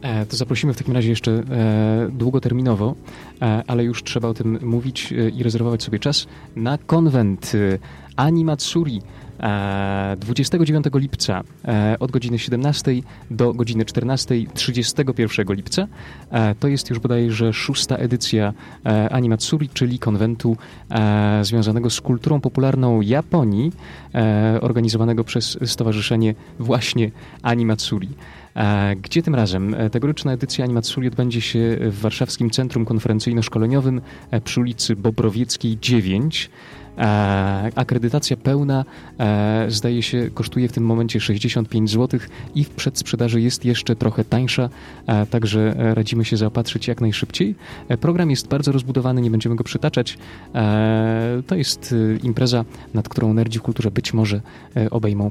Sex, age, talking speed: male, 20-39, 125 wpm